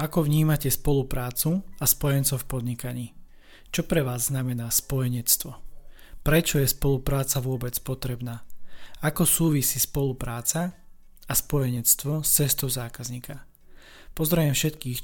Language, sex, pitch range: Slovak, male, 125-145 Hz